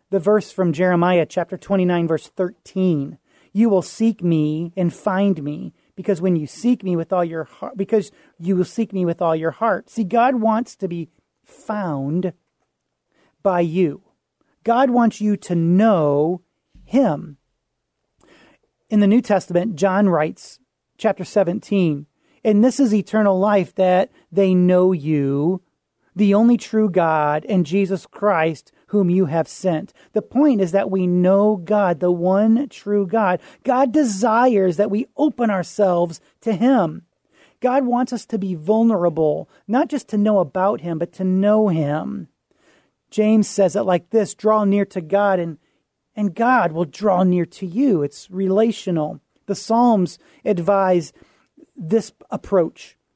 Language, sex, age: English, male, 30-49